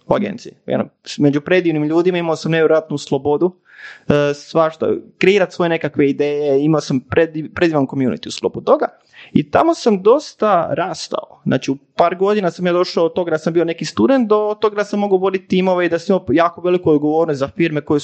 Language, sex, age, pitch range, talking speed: Croatian, male, 20-39, 150-210 Hz, 195 wpm